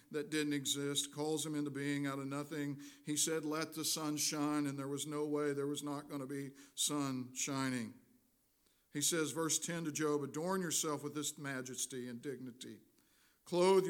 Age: 50-69